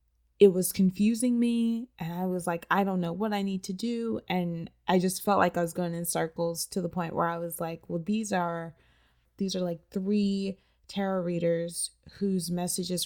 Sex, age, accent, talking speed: female, 20-39, American, 200 wpm